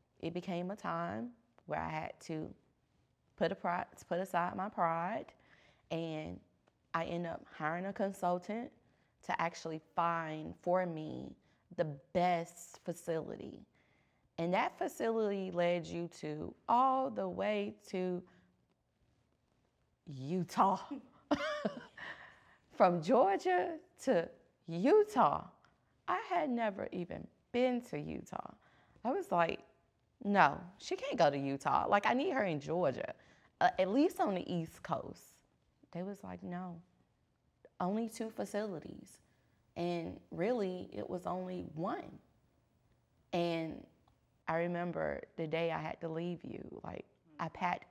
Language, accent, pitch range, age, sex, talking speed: English, American, 165-200 Hz, 20-39, female, 125 wpm